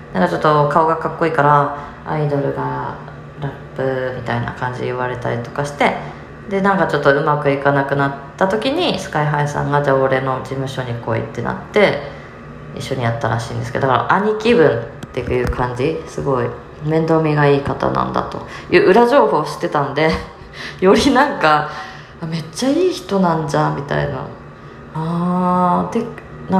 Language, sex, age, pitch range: Japanese, female, 20-39, 130-165 Hz